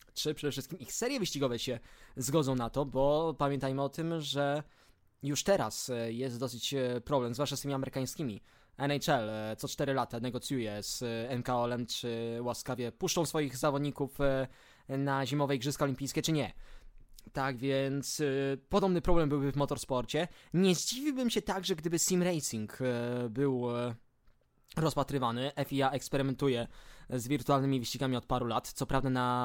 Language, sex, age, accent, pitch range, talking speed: Polish, male, 20-39, native, 125-155 Hz, 140 wpm